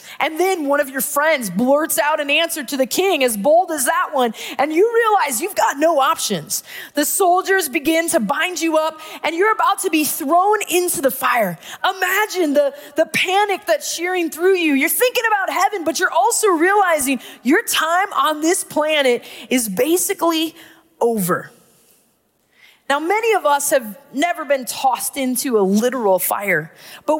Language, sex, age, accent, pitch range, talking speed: English, female, 20-39, American, 260-360 Hz, 170 wpm